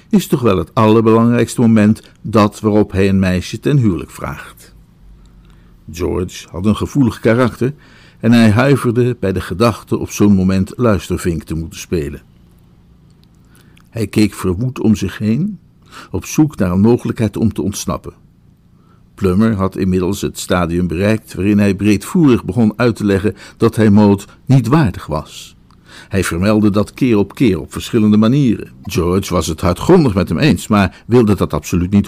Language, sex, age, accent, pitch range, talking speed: Dutch, male, 60-79, Dutch, 90-115 Hz, 160 wpm